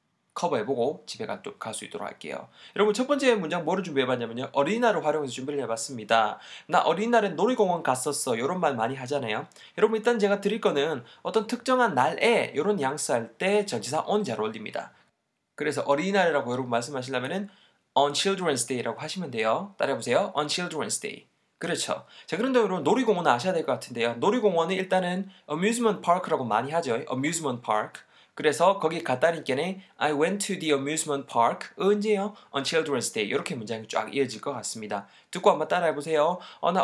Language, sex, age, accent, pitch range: Korean, male, 20-39, native, 130-200 Hz